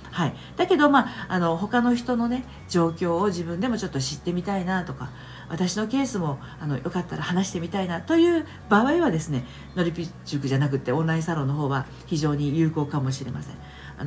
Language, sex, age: Japanese, female, 50-69